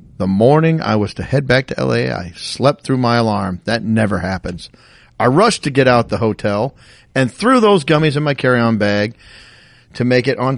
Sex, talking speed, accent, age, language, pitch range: male, 205 wpm, American, 40-59, English, 110-155 Hz